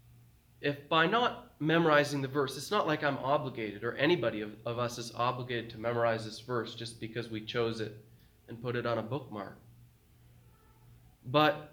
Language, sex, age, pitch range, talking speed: English, male, 20-39, 115-130 Hz, 175 wpm